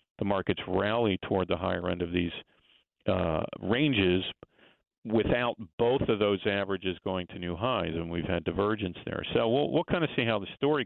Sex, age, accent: male, 50-69, American